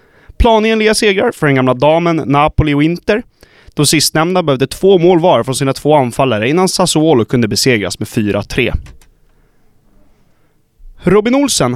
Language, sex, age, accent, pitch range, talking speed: Swedish, male, 30-49, native, 125-180 Hz, 140 wpm